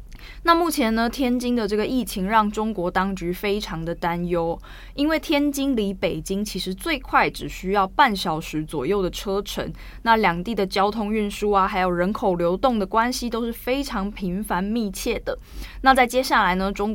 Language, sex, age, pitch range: Chinese, female, 20-39, 185-240 Hz